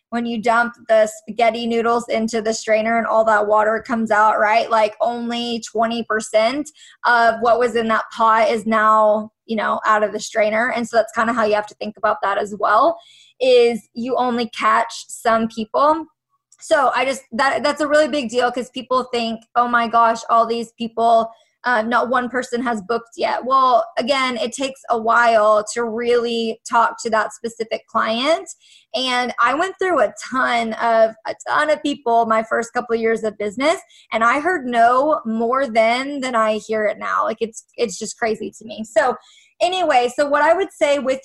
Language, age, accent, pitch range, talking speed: English, 20-39, American, 225-270 Hz, 195 wpm